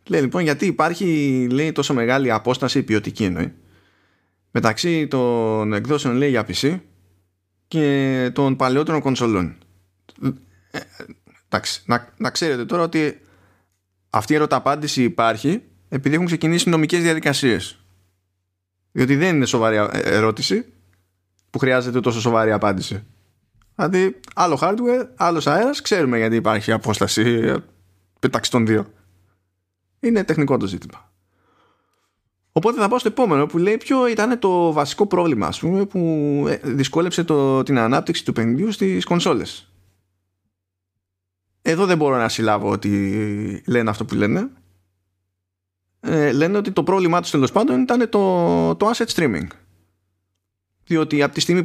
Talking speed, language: 130 wpm, Greek